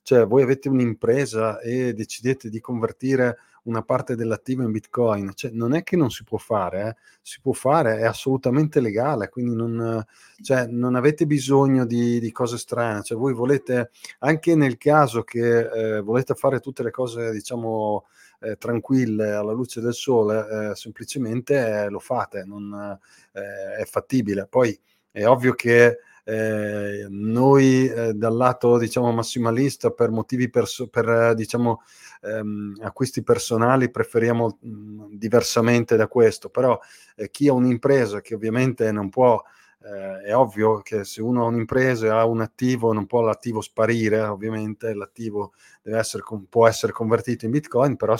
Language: Italian